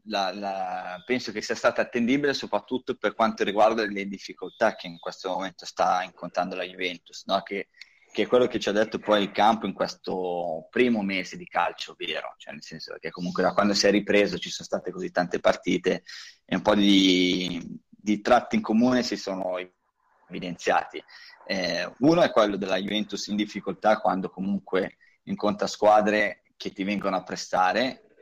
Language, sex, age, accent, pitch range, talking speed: Italian, male, 20-39, native, 95-115 Hz, 180 wpm